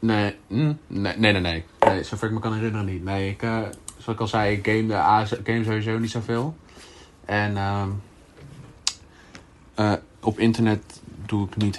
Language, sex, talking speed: Dutch, male, 185 wpm